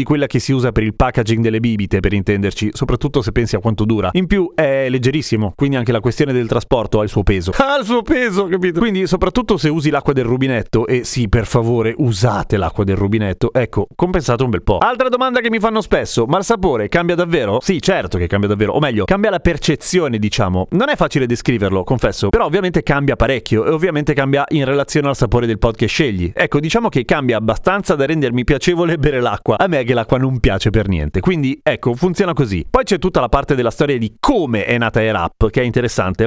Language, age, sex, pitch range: Italian, 30-49, male, 115-170 Hz